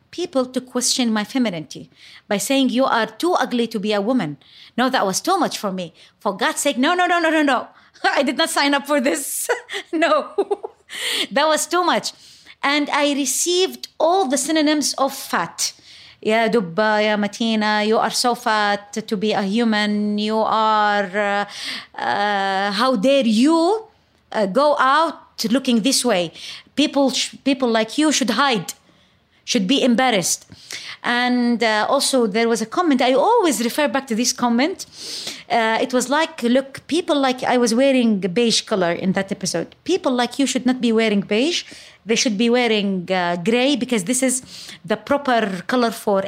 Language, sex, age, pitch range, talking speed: English, female, 20-39, 220-300 Hz, 180 wpm